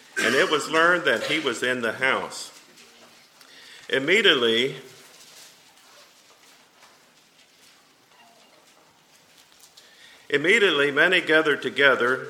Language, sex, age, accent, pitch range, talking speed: English, male, 50-69, American, 125-185 Hz, 75 wpm